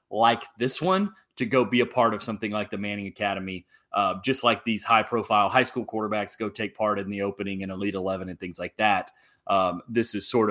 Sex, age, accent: male, 30-49, American